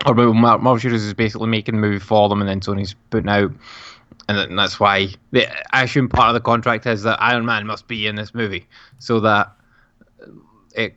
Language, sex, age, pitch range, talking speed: English, male, 10-29, 105-120 Hz, 200 wpm